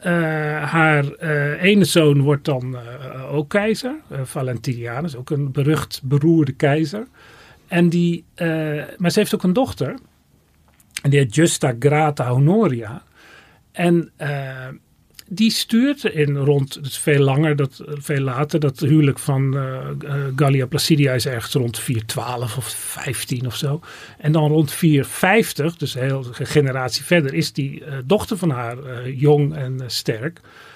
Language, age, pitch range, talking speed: Dutch, 40-59, 135-170 Hz, 155 wpm